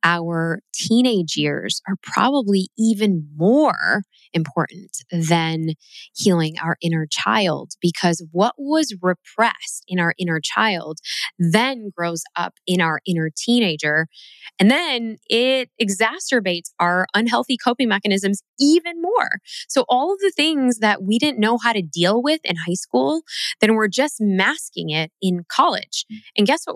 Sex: female